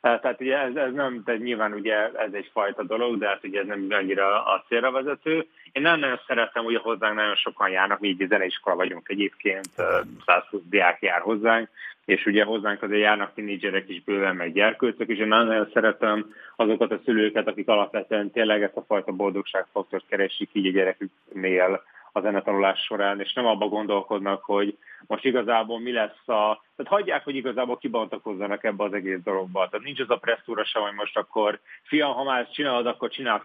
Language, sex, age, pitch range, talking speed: Hungarian, male, 30-49, 100-120 Hz, 190 wpm